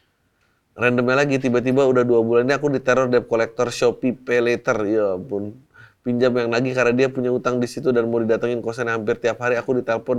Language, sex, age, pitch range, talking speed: Indonesian, male, 30-49, 115-165 Hz, 195 wpm